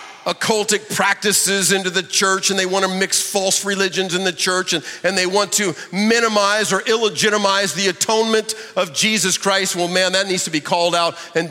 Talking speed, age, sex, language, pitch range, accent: 195 wpm, 40-59, male, English, 170-200 Hz, American